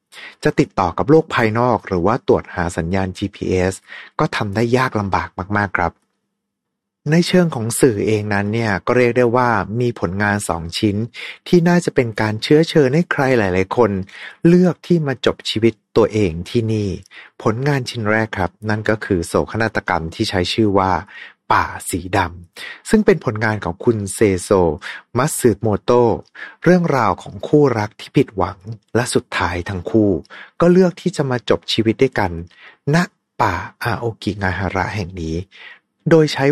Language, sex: Thai, male